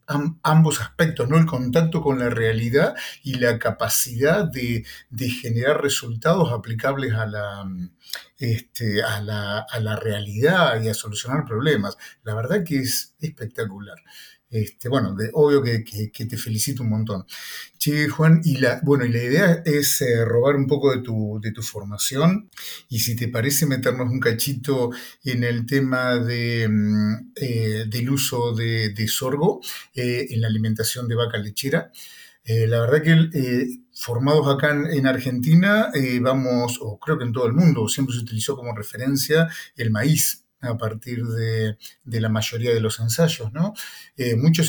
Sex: male